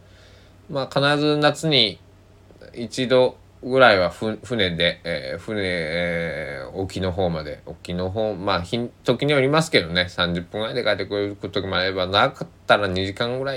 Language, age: Japanese, 20-39